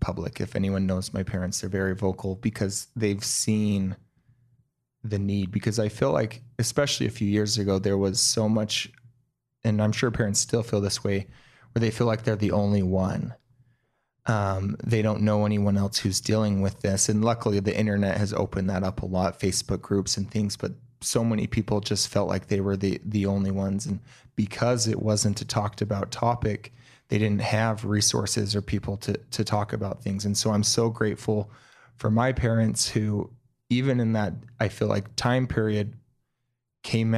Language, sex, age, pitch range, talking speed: English, male, 30-49, 100-115 Hz, 190 wpm